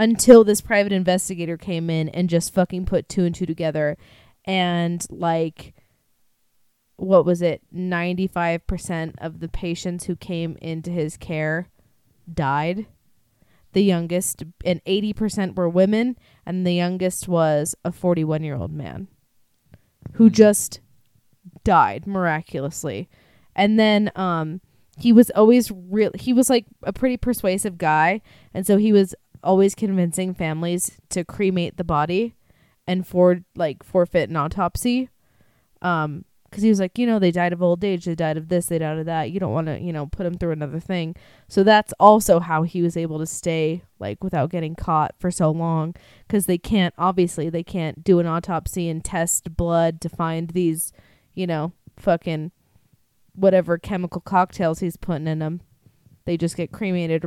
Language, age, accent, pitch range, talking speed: English, 20-39, American, 160-190 Hz, 160 wpm